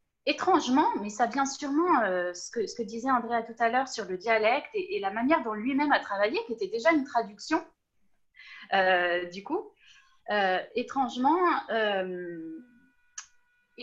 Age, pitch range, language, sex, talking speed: 20-39, 195-285 Hz, French, female, 155 wpm